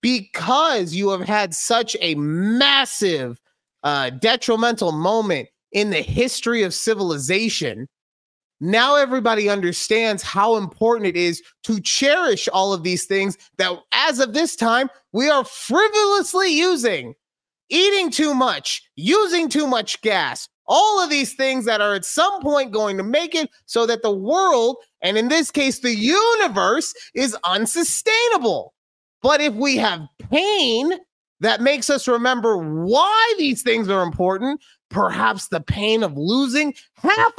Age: 30-49